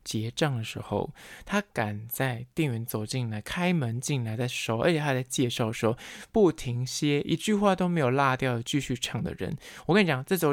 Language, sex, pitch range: Chinese, male, 115-150 Hz